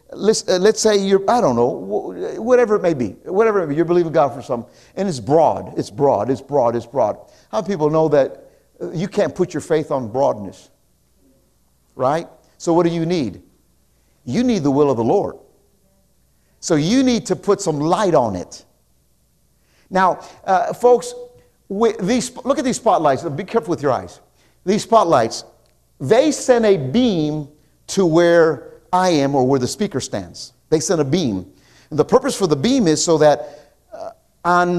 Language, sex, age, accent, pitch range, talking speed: English, male, 50-69, American, 140-200 Hz, 185 wpm